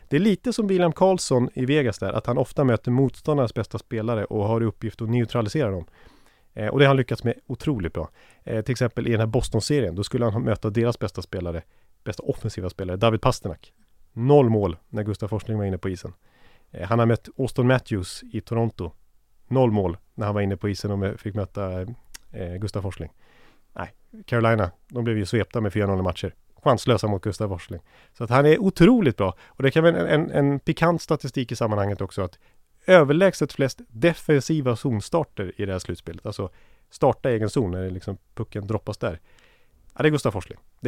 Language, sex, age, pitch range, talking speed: English, male, 30-49, 100-130 Hz, 200 wpm